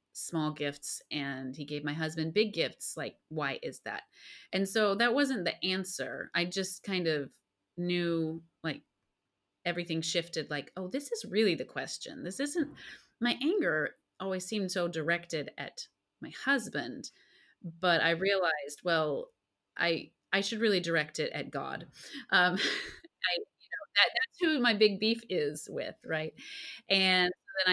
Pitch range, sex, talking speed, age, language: 150-185 Hz, female, 150 wpm, 30-49, English